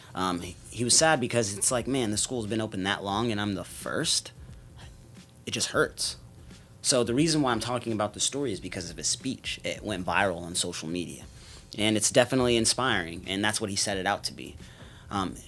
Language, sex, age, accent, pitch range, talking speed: English, male, 30-49, American, 95-115 Hz, 215 wpm